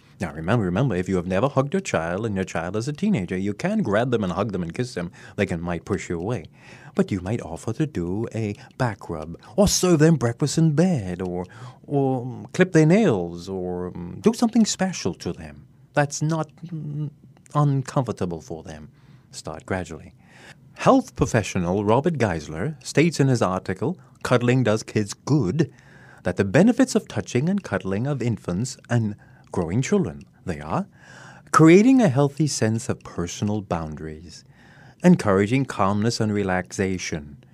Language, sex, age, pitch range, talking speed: English, male, 30-49, 100-155 Hz, 165 wpm